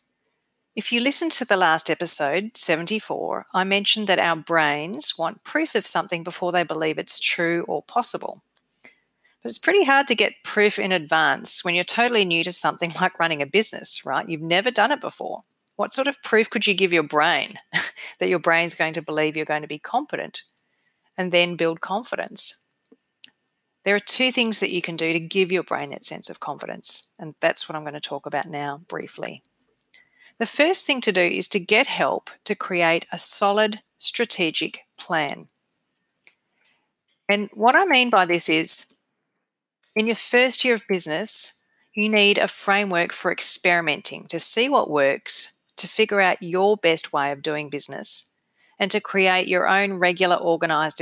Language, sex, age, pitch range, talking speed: English, female, 40-59, 165-215 Hz, 180 wpm